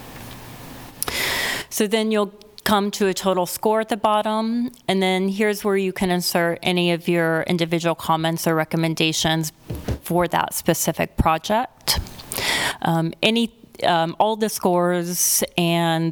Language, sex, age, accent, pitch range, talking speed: English, female, 30-49, American, 165-210 Hz, 135 wpm